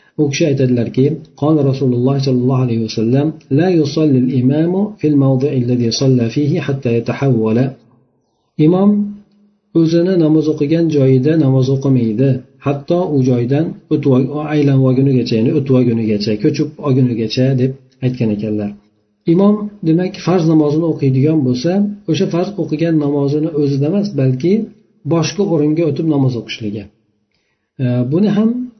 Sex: male